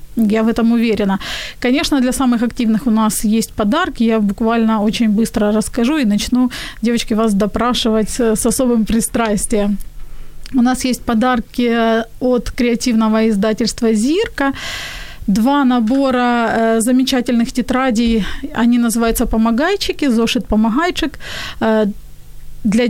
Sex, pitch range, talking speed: female, 220-255 Hz, 120 wpm